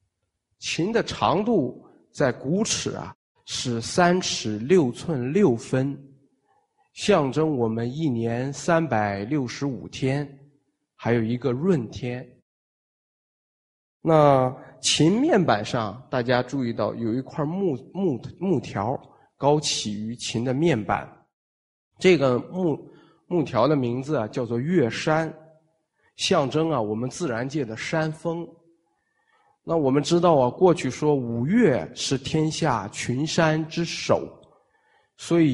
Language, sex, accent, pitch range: Chinese, male, native, 120-160 Hz